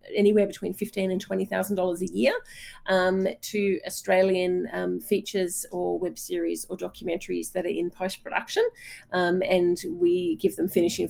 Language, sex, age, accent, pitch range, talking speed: English, female, 30-49, Australian, 175-220 Hz, 155 wpm